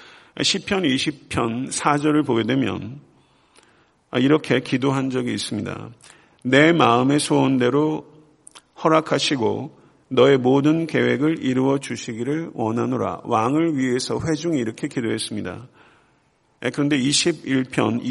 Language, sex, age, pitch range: Korean, male, 50-69, 125-150 Hz